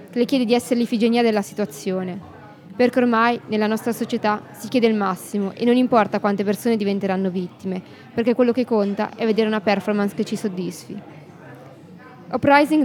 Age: 20-39